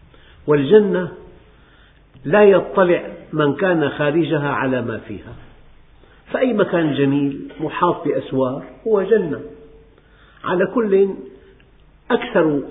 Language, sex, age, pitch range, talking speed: Arabic, male, 50-69, 140-170 Hz, 90 wpm